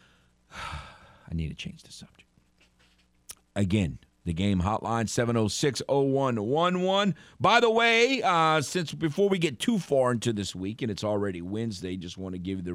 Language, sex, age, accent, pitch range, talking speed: English, male, 50-69, American, 85-120 Hz, 155 wpm